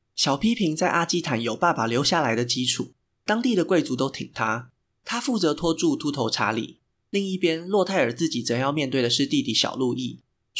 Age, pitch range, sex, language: 20-39, 120-175 Hz, male, Chinese